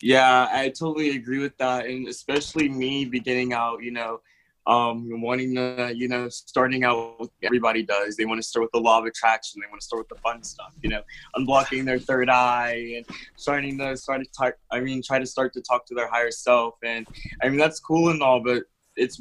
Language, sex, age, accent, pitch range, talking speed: English, male, 20-39, American, 115-135 Hz, 225 wpm